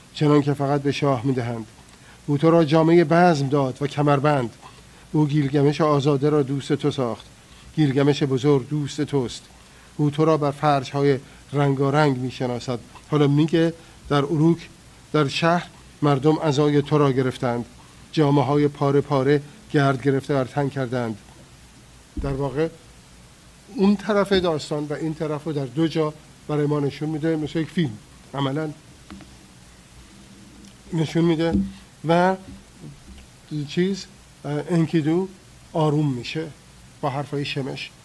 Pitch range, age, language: 135-155 Hz, 50-69, Persian